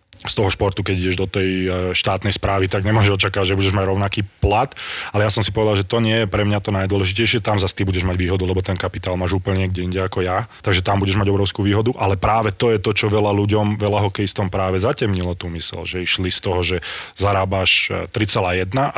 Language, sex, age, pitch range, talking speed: Slovak, male, 20-39, 90-105 Hz, 230 wpm